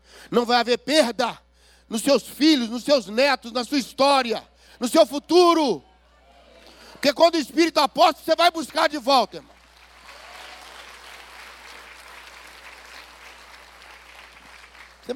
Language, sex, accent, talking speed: Portuguese, male, Brazilian, 110 wpm